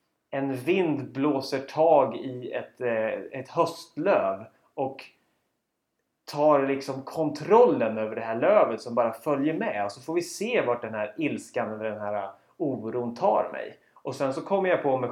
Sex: male